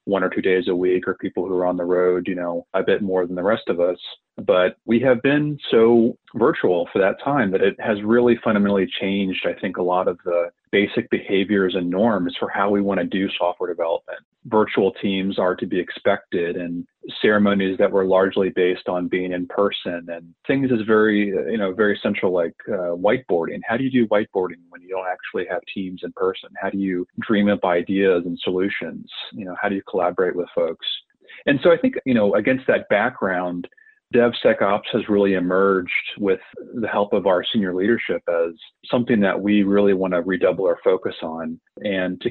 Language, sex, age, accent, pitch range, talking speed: English, male, 30-49, American, 90-115 Hz, 205 wpm